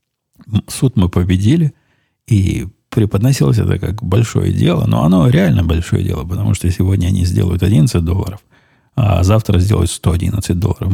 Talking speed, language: 145 wpm, Russian